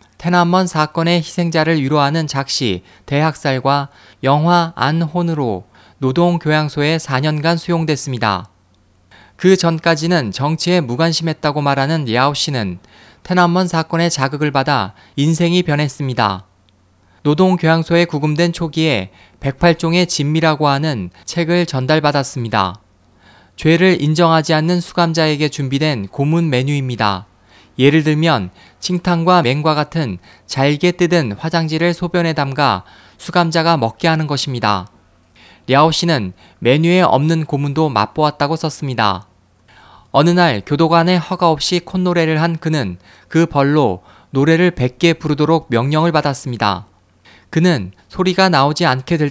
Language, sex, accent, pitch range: Korean, male, native, 110-165 Hz